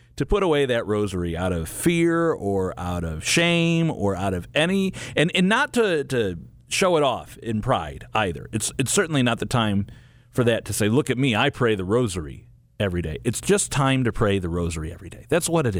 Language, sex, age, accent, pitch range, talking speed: English, male, 40-59, American, 100-130 Hz, 220 wpm